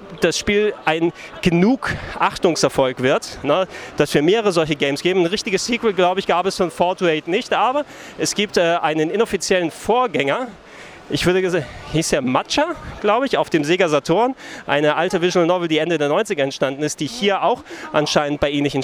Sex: male